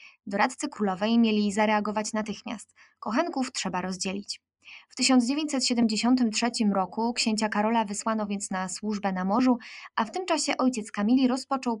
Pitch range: 205-250 Hz